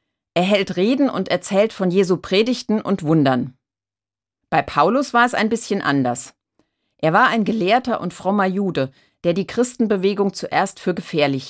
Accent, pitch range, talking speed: German, 140-205 Hz, 155 wpm